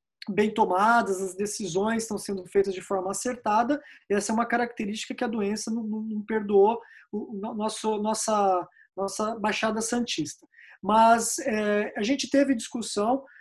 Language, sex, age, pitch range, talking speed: Portuguese, male, 20-39, 210-255 Hz, 135 wpm